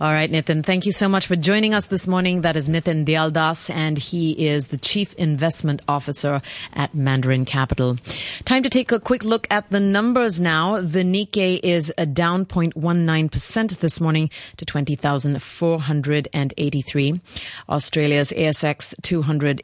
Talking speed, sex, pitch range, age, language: 150 wpm, female, 145-185 Hz, 30-49, English